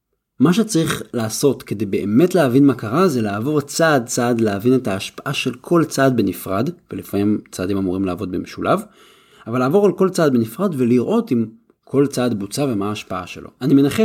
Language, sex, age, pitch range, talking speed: Hebrew, male, 30-49, 110-150 Hz, 170 wpm